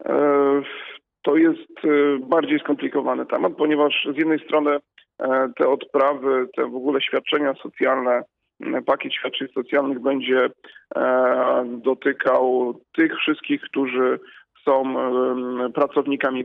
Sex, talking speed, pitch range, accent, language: male, 95 wpm, 135-155 Hz, native, Polish